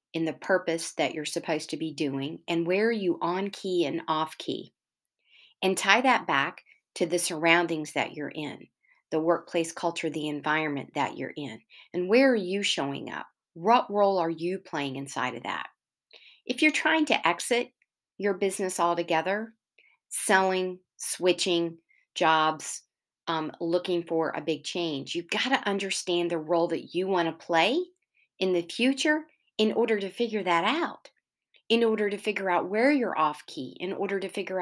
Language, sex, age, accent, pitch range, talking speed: English, female, 50-69, American, 165-210 Hz, 170 wpm